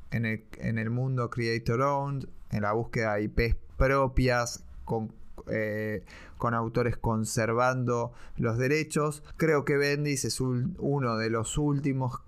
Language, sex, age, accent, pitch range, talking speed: Spanish, male, 20-39, Argentinian, 115-145 Hz, 140 wpm